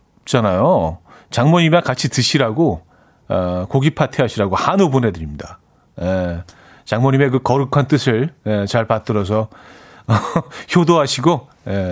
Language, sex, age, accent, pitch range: Korean, male, 40-59, native, 110-155 Hz